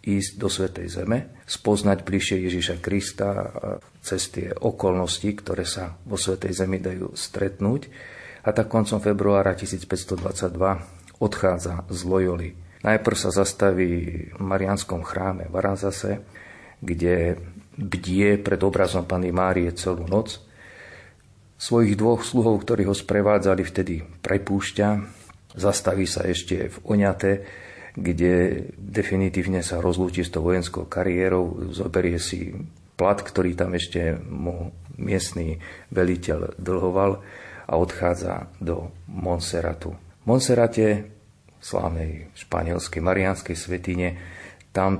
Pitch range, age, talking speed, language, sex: 90-100 Hz, 40-59, 110 wpm, Slovak, male